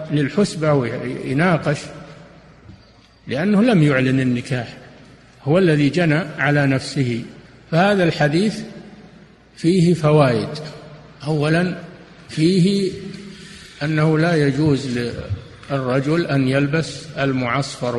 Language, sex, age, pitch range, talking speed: Arabic, male, 50-69, 130-160 Hz, 80 wpm